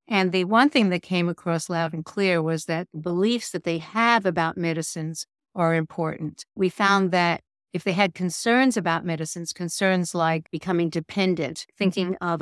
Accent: American